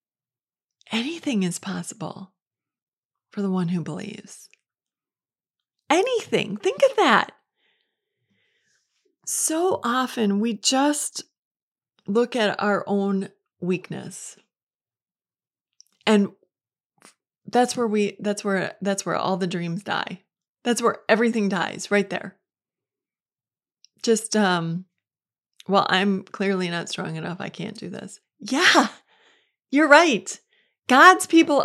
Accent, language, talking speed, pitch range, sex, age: American, English, 105 wpm, 200-290 Hz, female, 30-49